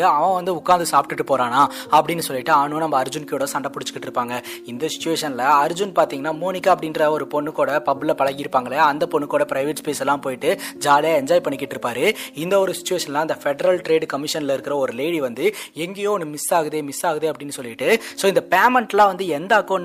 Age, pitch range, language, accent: 20-39, 150-185 Hz, Tamil, native